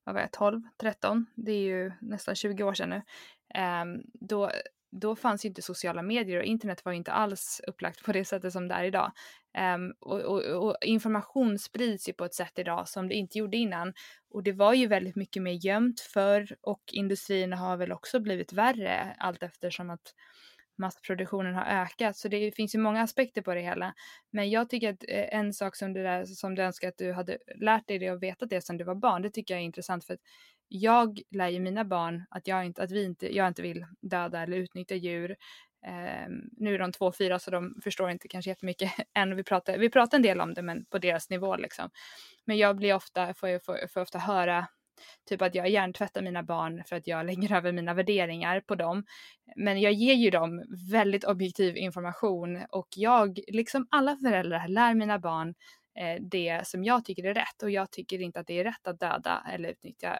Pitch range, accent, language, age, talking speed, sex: 180-215 Hz, native, Swedish, 20-39, 210 wpm, female